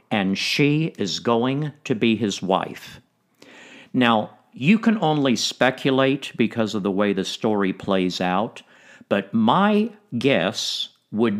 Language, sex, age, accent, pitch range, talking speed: English, male, 50-69, American, 105-150 Hz, 130 wpm